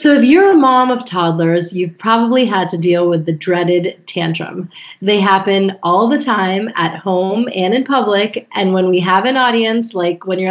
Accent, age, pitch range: American, 30-49, 180-245 Hz